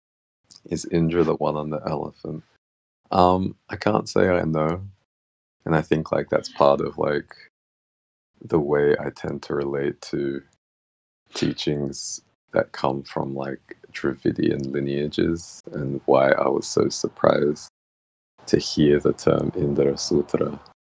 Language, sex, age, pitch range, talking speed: English, male, 30-49, 70-80 Hz, 135 wpm